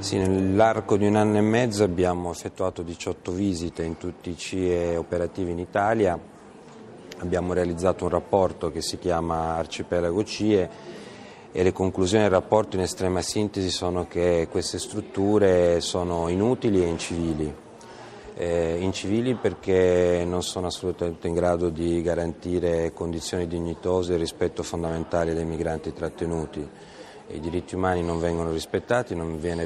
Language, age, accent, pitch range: Italian, 40-59, native, 85-95 Hz